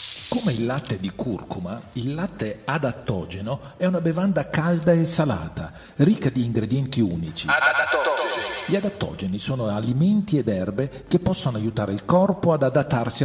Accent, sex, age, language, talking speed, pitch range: native, male, 50-69, Italian, 140 wpm, 115-170 Hz